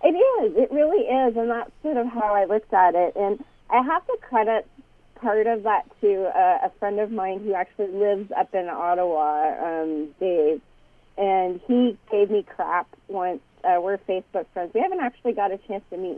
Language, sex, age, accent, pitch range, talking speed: English, female, 30-49, American, 180-230 Hz, 200 wpm